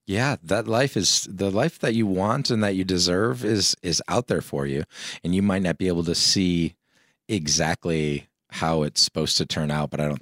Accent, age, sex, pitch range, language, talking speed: American, 30-49, male, 75-90 Hz, English, 215 wpm